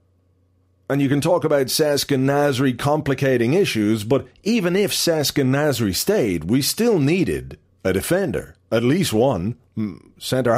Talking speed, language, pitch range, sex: 145 wpm, English, 95-150 Hz, male